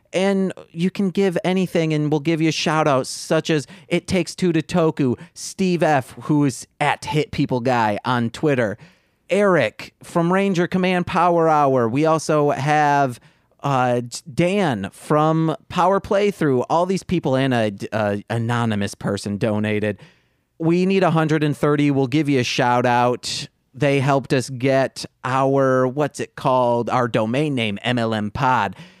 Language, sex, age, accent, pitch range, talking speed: English, male, 30-49, American, 130-175 Hz, 155 wpm